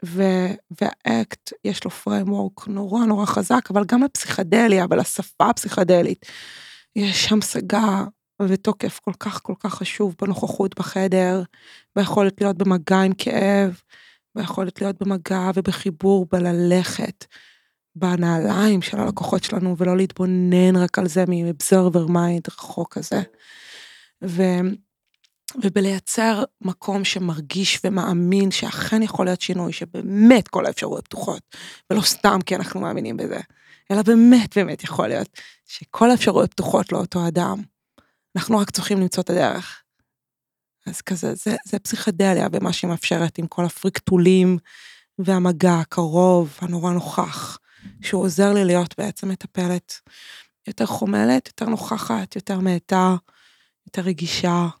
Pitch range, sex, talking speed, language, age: 180-205 Hz, female, 120 wpm, Hebrew, 20-39